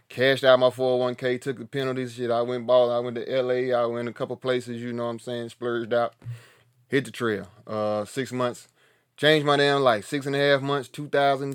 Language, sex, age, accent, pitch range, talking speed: English, male, 30-49, American, 120-135 Hz, 230 wpm